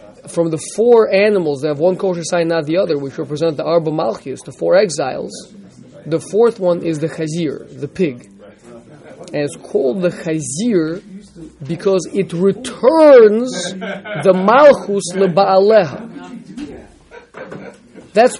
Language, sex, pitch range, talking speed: English, male, 155-200 Hz, 130 wpm